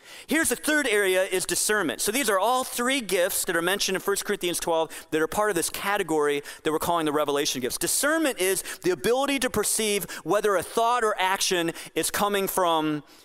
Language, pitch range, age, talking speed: English, 155-235 Hz, 30-49, 205 wpm